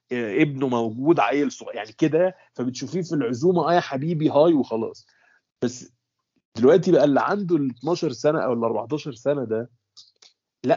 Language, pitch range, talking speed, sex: Arabic, 125-160 Hz, 155 wpm, male